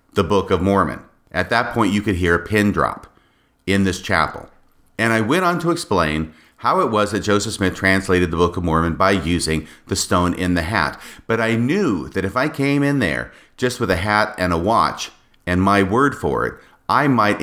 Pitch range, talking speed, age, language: 90-110 Hz, 215 wpm, 40-59, English